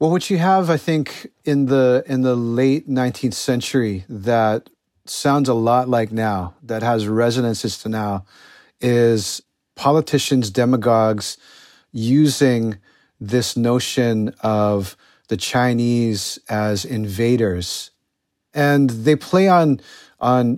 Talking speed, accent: 115 wpm, American